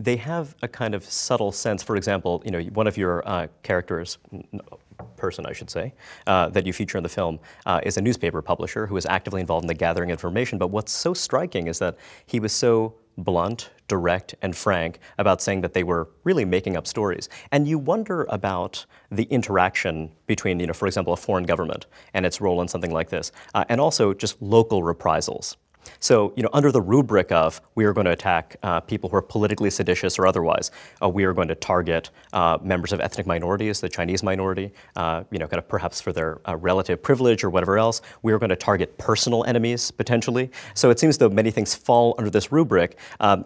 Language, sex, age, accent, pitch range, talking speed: English, male, 30-49, American, 90-115 Hz, 215 wpm